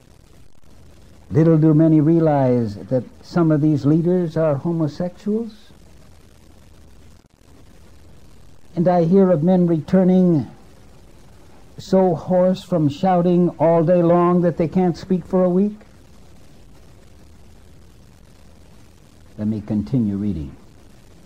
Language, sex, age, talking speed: English, male, 60-79, 100 wpm